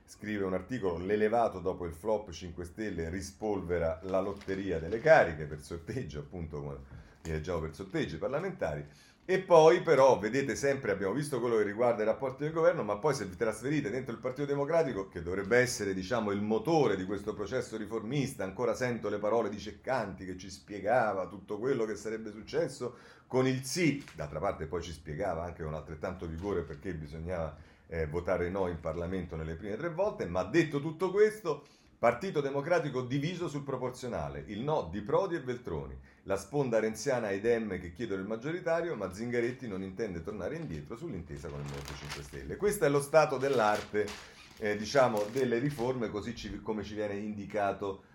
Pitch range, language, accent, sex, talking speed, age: 85-125 Hz, Italian, native, male, 175 wpm, 40-59